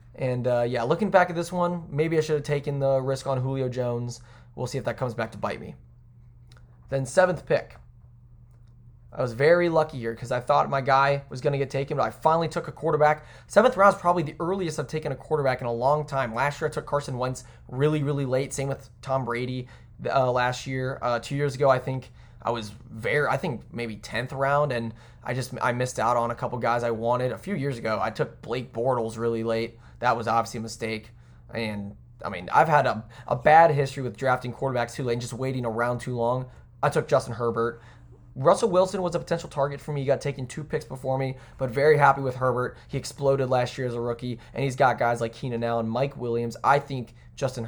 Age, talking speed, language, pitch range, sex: 20-39, 235 wpm, English, 120-140 Hz, male